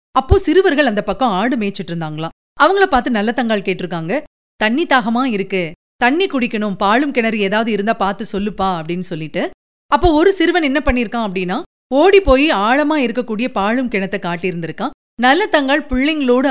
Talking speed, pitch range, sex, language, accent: 150 wpm, 195-270 Hz, female, Tamil, native